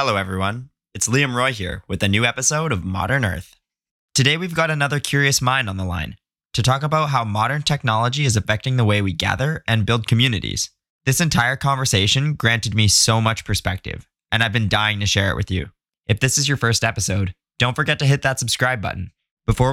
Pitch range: 100-130 Hz